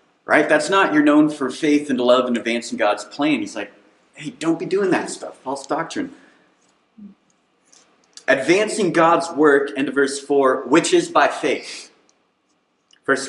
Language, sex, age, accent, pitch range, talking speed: English, male, 30-49, American, 135-180 Hz, 160 wpm